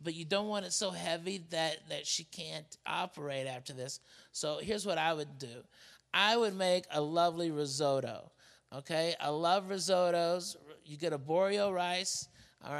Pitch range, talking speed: 150-185 Hz, 170 wpm